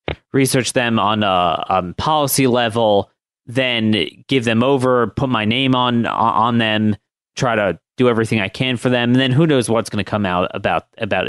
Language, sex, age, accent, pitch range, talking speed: English, male, 30-49, American, 115-145 Hz, 190 wpm